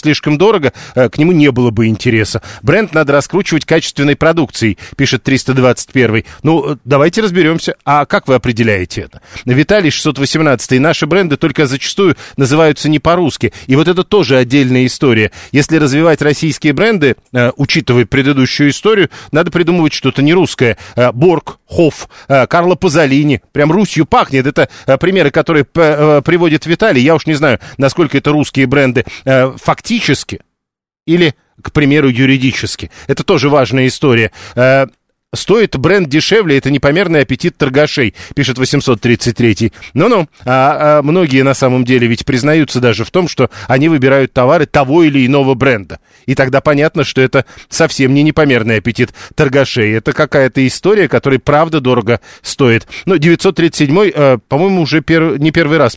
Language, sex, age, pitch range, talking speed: Russian, male, 40-59, 125-155 Hz, 145 wpm